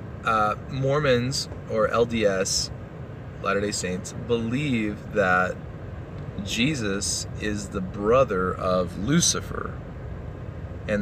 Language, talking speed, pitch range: English, 80 wpm, 90-115 Hz